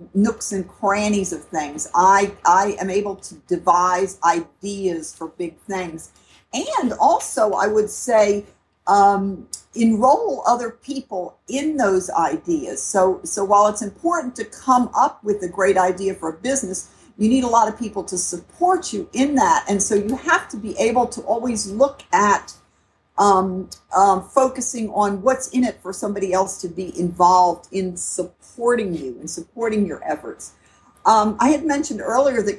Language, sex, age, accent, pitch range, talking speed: English, female, 50-69, American, 185-230 Hz, 165 wpm